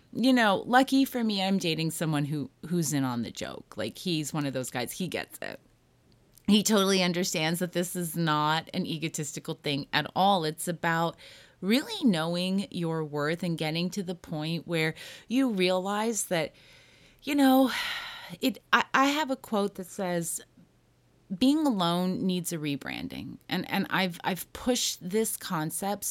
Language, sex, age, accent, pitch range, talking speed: English, female, 30-49, American, 165-220 Hz, 165 wpm